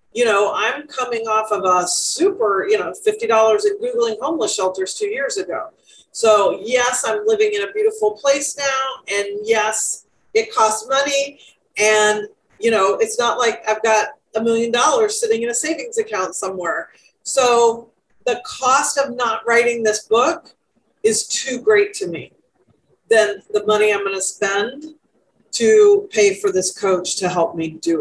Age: 40-59